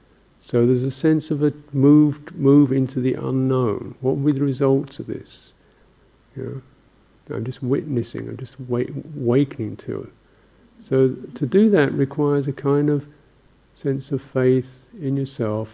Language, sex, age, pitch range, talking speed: English, male, 50-69, 110-135 Hz, 160 wpm